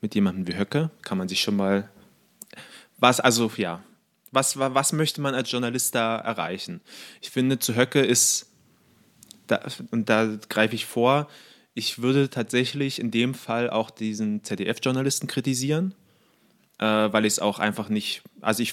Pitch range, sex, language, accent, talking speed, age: 110-130 Hz, male, German, German, 160 wpm, 20-39